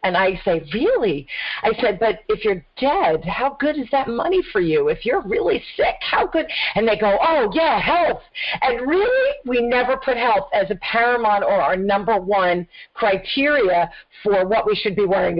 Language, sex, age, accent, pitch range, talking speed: English, female, 40-59, American, 195-295 Hz, 190 wpm